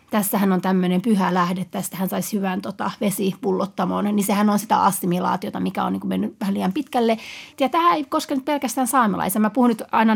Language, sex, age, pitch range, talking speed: Finnish, female, 30-49, 190-235 Hz, 195 wpm